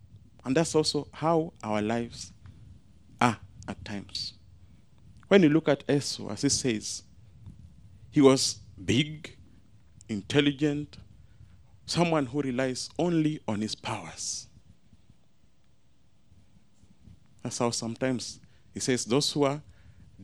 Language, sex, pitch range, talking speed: English, male, 105-155 Hz, 105 wpm